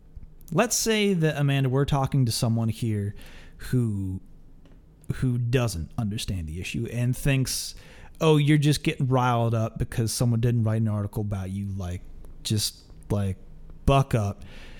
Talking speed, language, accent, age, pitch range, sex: 145 wpm, English, American, 30-49, 105-140 Hz, male